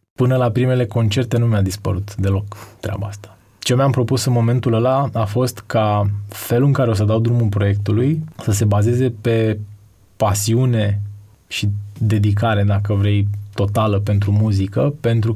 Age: 20-39